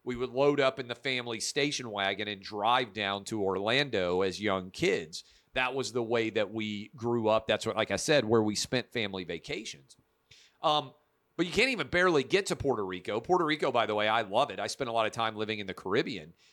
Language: English